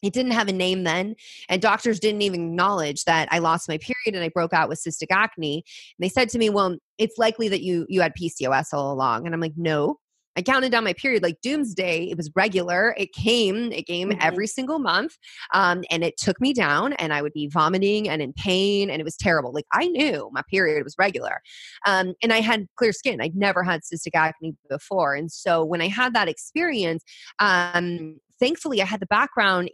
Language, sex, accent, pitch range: German, female, American, 160-220 Hz